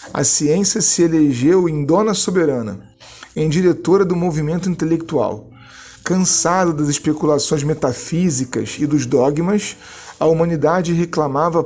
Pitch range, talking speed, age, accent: 145-180 Hz, 115 wpm, 40-59, Brazilian